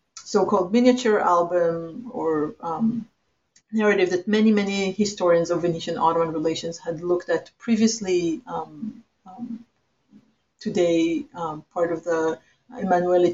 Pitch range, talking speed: 170-210 Hz, 120 wpm